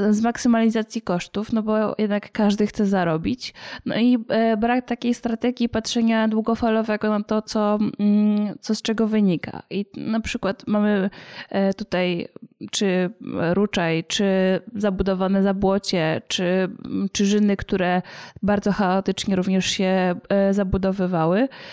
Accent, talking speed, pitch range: native, 115 wpm, 205-235 Hz